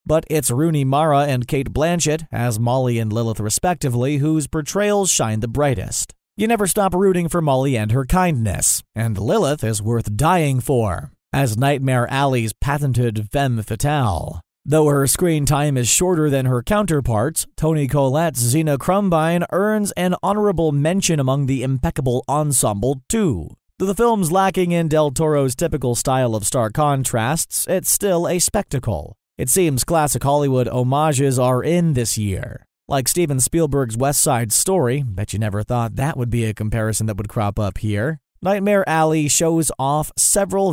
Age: 30-49